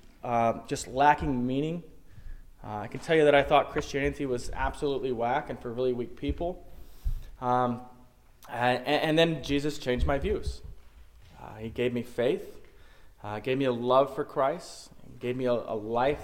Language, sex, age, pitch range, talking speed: English, male, 20-39, 115-145 Hz, 170 wpm